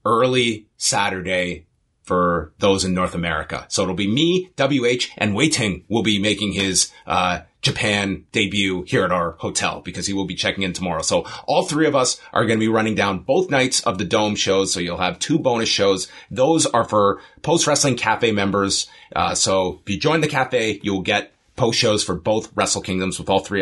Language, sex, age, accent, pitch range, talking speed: English, male, 30-49, American, 90-120 Hz, 205 wpm